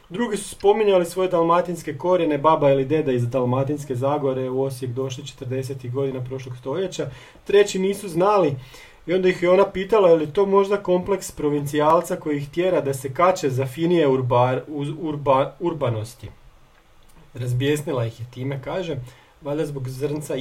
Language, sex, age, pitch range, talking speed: Croatian, male, 30-49, 130-170 Hz, 160 wpm